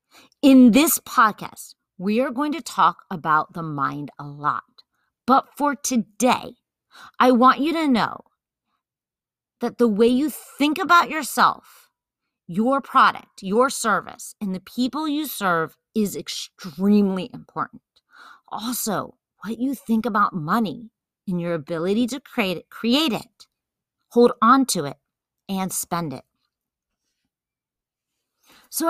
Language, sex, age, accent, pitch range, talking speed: English, female, 40-59, American, 175-260 Hz, 130 wpm